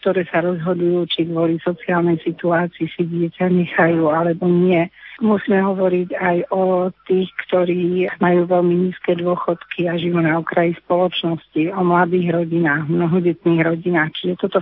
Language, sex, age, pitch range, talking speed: Slovak, female, 50-69, 170-190 Hz, 140 wpm